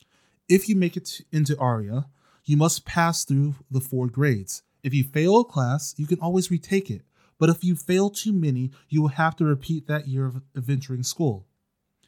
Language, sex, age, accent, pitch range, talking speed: English, male, 20-39, American, 125-160 Hz, 195 wpm